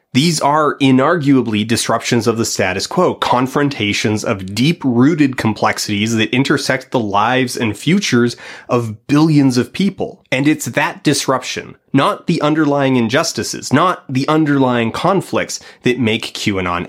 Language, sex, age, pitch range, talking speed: English, male, 30-49, 110-140 Hz, 130 wpm